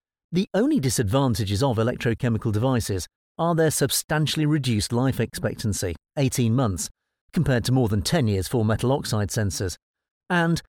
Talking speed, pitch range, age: 140 wpm, 115-160 Hz, 50-69